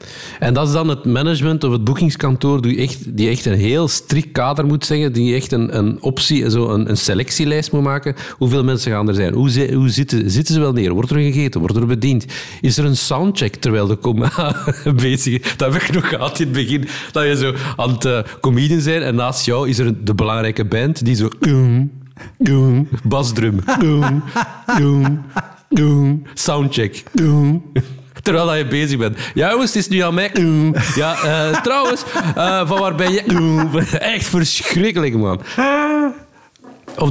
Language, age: Dutch, 50-69